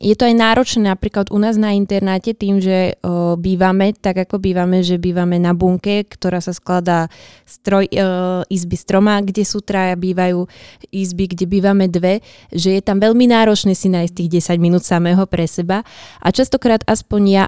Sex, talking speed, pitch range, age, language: female, 175 wpm, 175-195 Hz, 20-39, Slovak